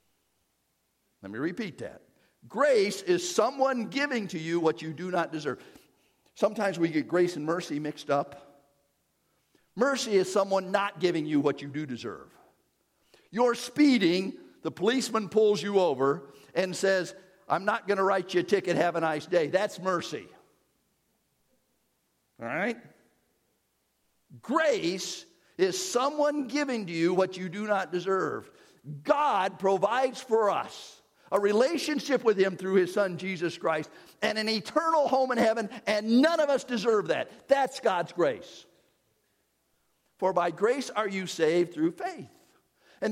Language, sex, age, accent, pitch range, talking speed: English, male, 50-69, American, 165-235 Hz, 150 wpm